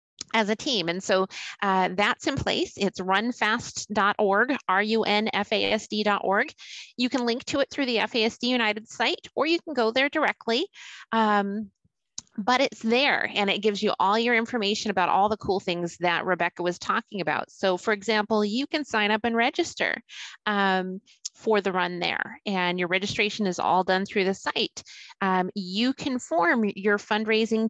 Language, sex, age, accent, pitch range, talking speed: English, female, 30-49, American, 205-250 Hz, 165 wpm